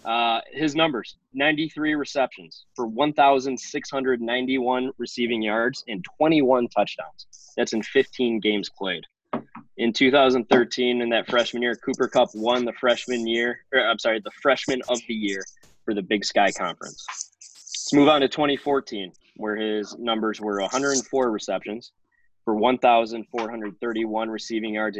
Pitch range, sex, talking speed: 105-135 Hz, male, 135 wpm